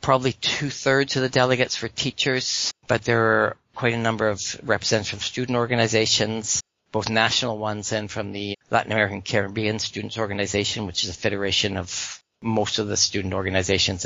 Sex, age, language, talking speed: male, 50-69, English, 165 wpm